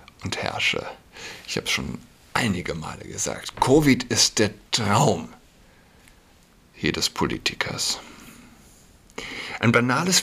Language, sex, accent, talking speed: German, male, German, 95 wpm